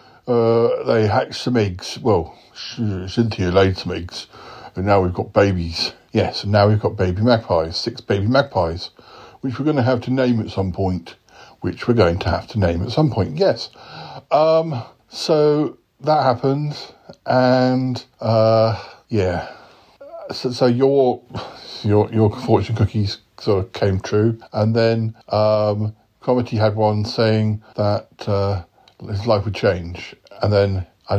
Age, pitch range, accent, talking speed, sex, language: 50-69, 100-125 Hz, British, 155 wpm, male, English